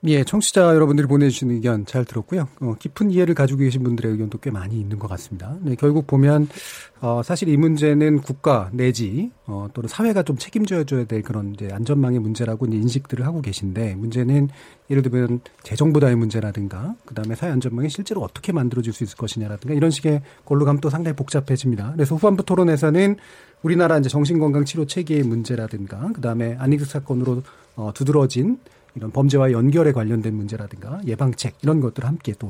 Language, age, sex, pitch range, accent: Korean, 40-59, male, 120-160 Hz, native